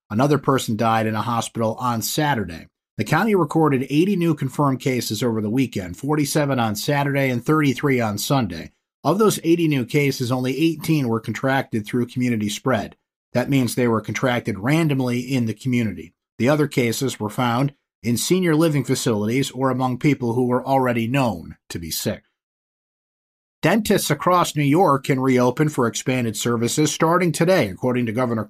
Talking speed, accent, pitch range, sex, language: 165 wpm, American, 115-150 Hz, male, English